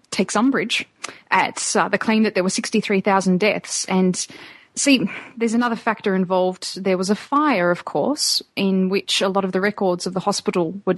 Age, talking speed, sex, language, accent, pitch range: 30-49, 185 wpm, female, English, Australian, 185-220 Hz